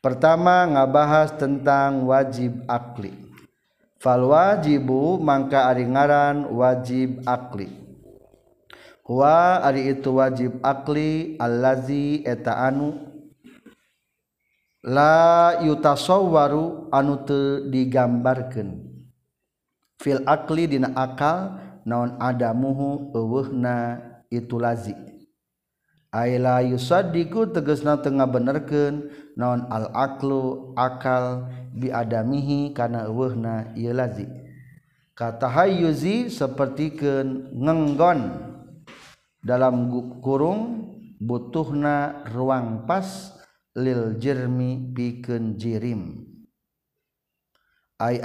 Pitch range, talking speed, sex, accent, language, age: 125-150 Hz, 75 wpm, male, native, Indonesian, 50-69